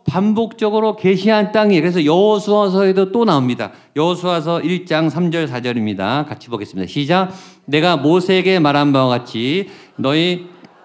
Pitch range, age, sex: 150-205 Hz, 50-69, male